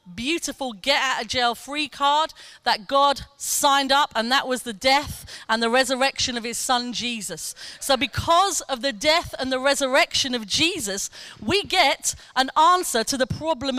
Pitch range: 250-315 Hz